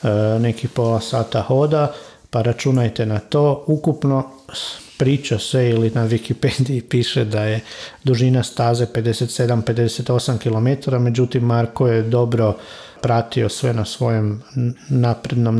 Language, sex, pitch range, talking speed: Croatian, male, 110-130 Hz, 115 wpm